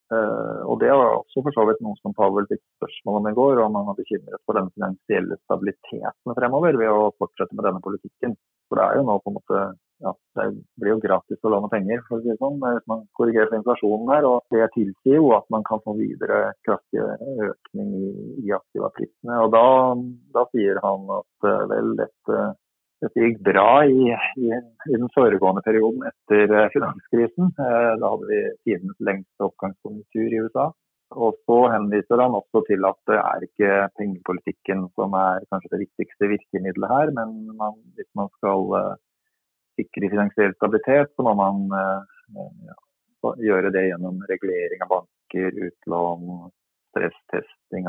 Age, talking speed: 30-49, 170 wpm